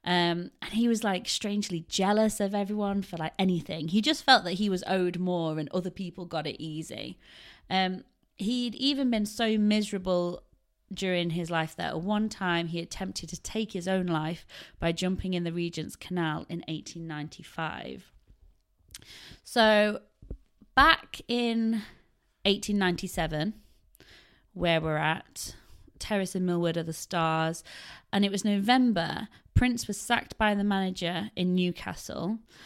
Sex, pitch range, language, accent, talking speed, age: female, 165-205 Hz, English, British, 145 wpm, 30-49